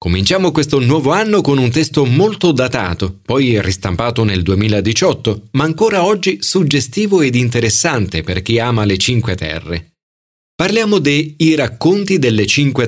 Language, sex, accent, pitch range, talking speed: Italian, male, native, 100-150 Hz, 145 wpm